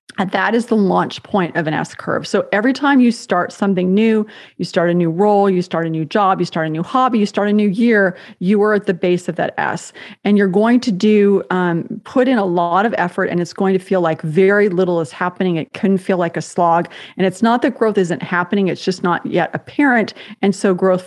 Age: 30-49